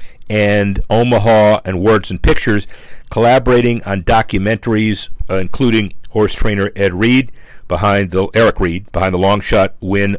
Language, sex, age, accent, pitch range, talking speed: English, male, 50-69, American, 90-105 Hz, 140 wpm